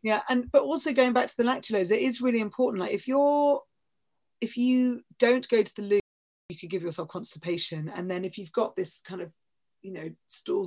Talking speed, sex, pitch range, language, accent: 220 wpm, female, 180-215 Hz, English, British